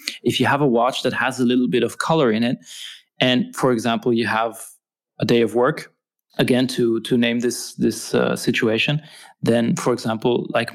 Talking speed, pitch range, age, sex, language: 195 wpm, 115-135 Hz, 20-39, male, English